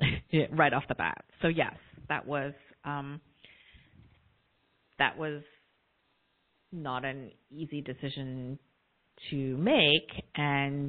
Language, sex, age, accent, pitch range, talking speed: English, female, 30-49, American, 140-165 Hz, 100 wpm